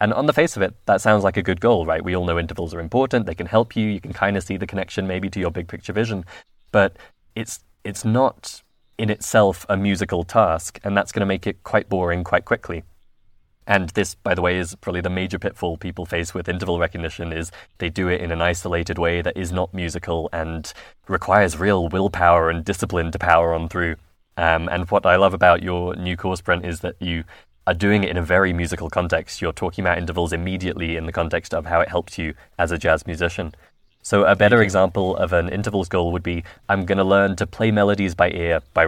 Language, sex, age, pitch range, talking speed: English, male, 20-39, 85-100 Hz, 230 wpm